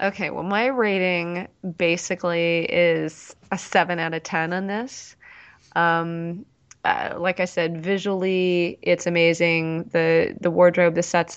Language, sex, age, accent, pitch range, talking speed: English, female, 20-39, American, 165-185 Hz, 135 wpm